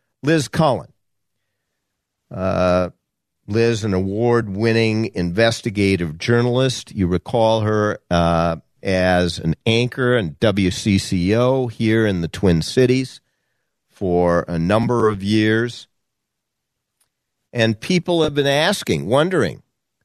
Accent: American